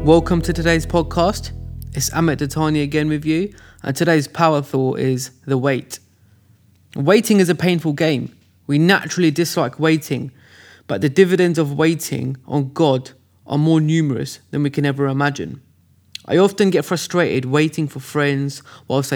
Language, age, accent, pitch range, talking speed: English, 20-39, British, 130-160 Hz, 155 wpm